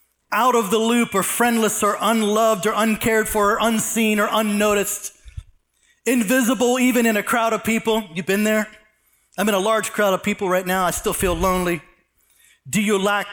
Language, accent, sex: English, American, male